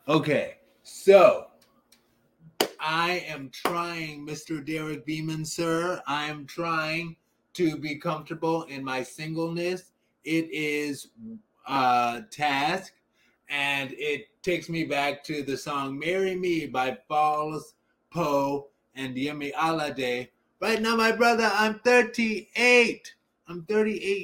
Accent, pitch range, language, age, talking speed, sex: American, 145-175 Hz, English, 20-39, 110 wpm, male